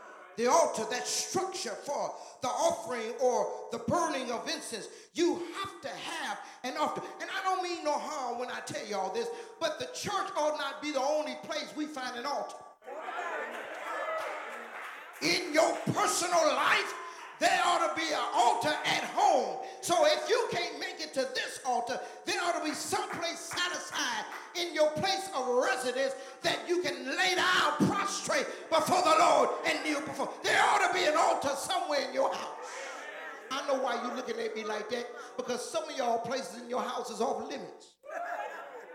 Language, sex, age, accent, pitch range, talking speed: English, male, 40-59, American, 240-345 Hz, 180 wpm